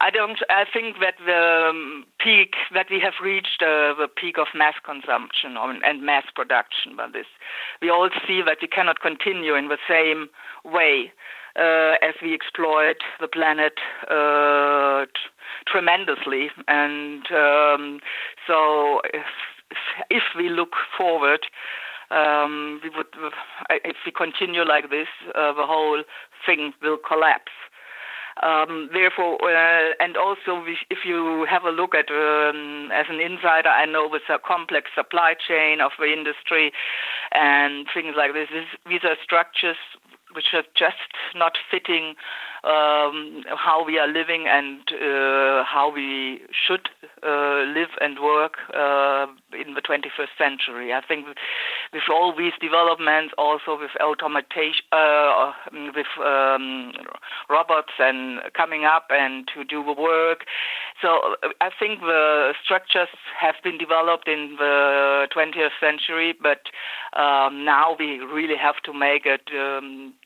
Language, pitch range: English, 145-165 Hz